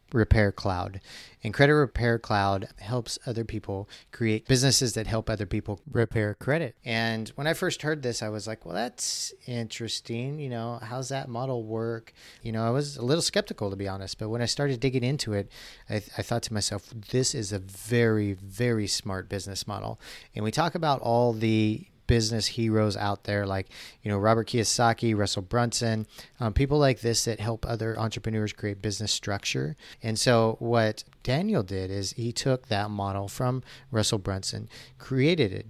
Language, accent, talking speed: English, American, 180 wpm